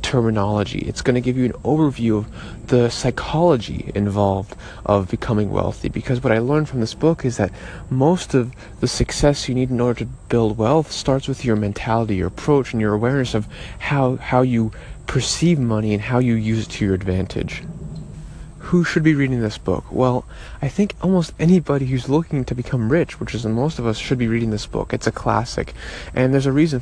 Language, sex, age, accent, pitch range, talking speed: English, male, 30-49, American, 110-135 Hz, 205 wpm